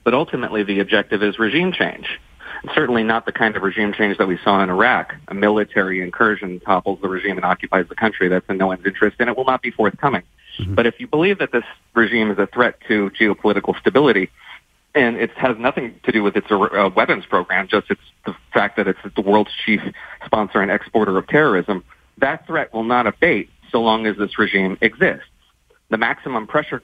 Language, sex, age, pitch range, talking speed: English, male, 30-49, 95-110 Hz, 200 wpm